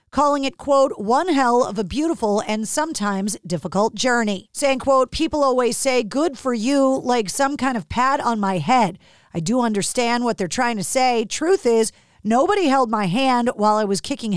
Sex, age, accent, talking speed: female, 40-59, American, 190 wpm